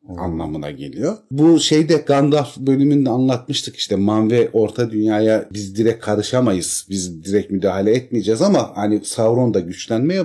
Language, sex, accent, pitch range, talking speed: Turkish, male, native, 90-135 Hz, 140 wpm